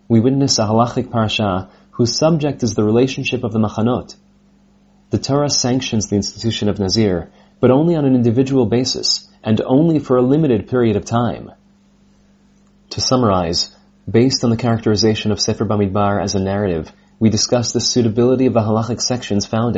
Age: 30-49